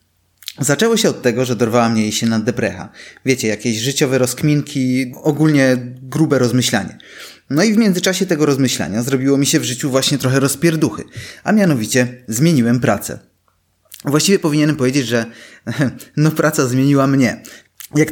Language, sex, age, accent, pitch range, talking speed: Polish, male, 20-39, native, 120-165 Hz, 150 wpm